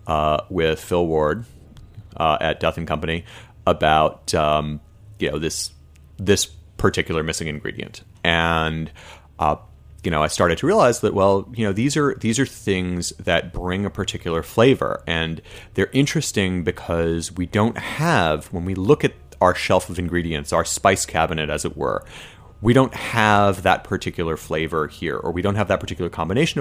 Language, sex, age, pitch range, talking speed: English, male, 30-49, 85-110 Hz, 170 wpm